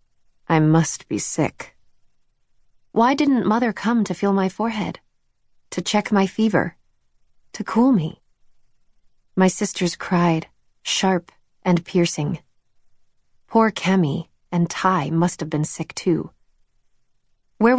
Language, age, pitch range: English, 30-49, 160-215 Hz